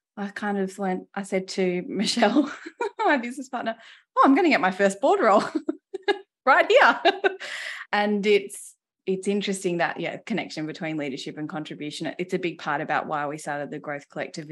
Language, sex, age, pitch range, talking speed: English, female, 20-39, 150-195 Hz, 180 wpm